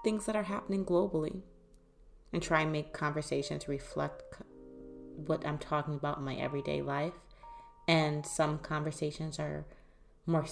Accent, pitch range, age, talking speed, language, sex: American, 135-160 Hz, 30-49, 135 wpm, English, female